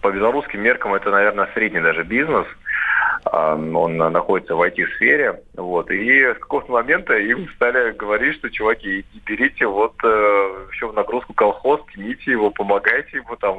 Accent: native